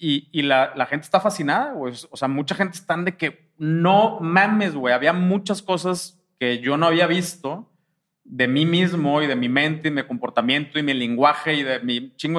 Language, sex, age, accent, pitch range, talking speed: English, male, 30-49, Mexican, 140-180 Hz, 210 wpm